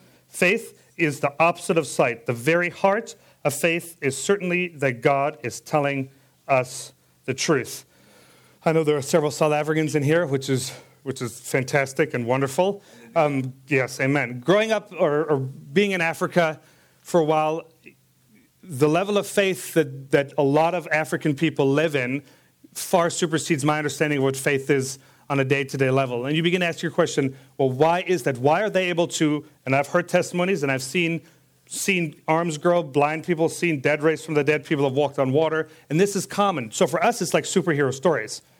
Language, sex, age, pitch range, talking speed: English, male, 40-59, 135-170 Hz, 195 wpm